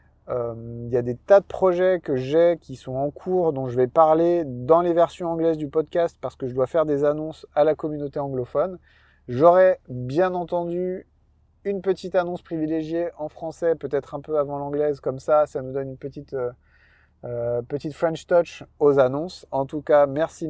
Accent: French